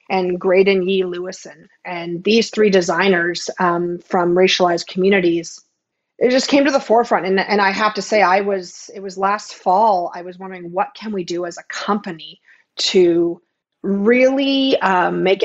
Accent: American